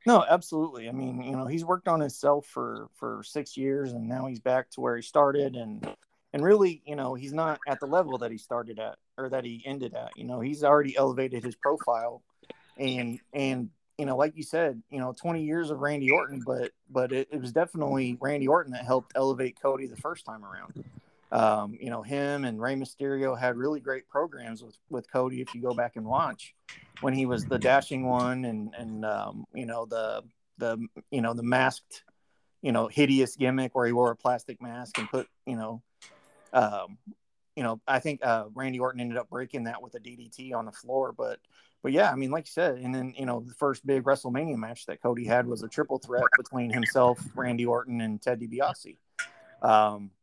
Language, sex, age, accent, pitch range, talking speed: English, male, 30-49, American, 120-140 Hz, 215 wpm